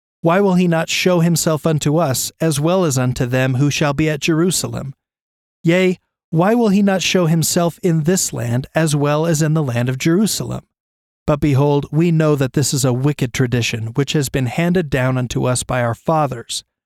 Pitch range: 125-160 Hz